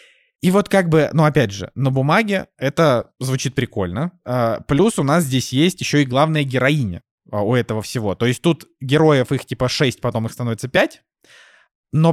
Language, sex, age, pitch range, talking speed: Russian, male, 20-39, 120-155 Hz, 180 wpm